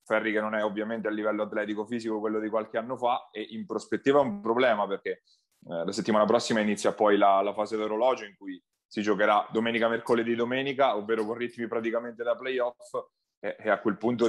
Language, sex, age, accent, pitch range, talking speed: Italian, male, 20-39, native, 105-120 Hz, 205 wpm